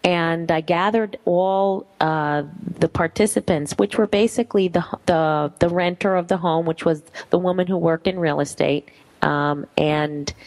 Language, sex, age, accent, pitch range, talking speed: English, female, 30-49, American, 160-200 Hz, 160 wpm